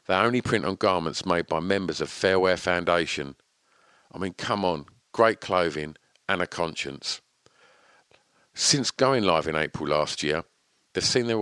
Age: 50-69